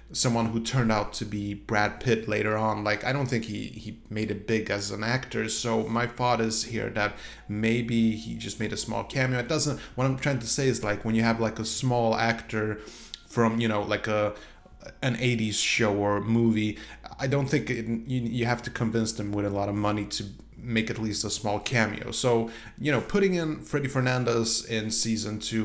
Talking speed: 215 wpm